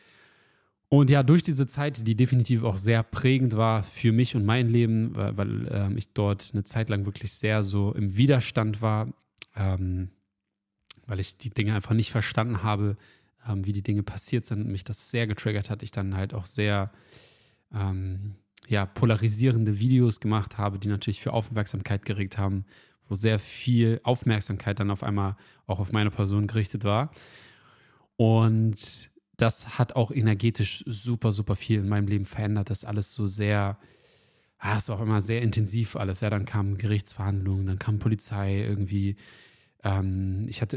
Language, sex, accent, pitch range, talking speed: German, male, German, 100-115 Hz, 170 wpm